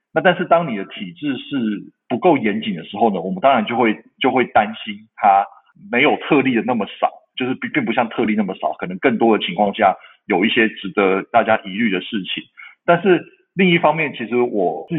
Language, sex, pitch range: Chinese, male, 105-155 Hz